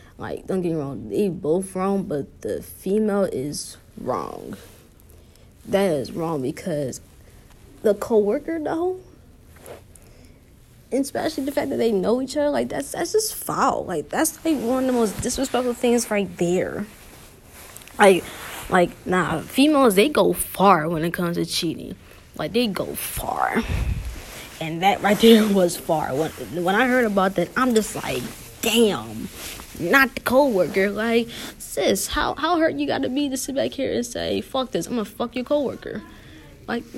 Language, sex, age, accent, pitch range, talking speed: English, female, 20-39, American, 170-240 Hz, 165 wpm